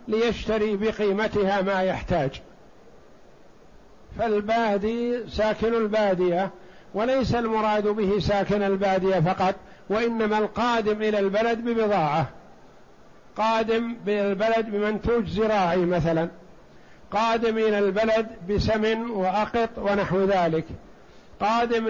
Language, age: Arabic, 60-79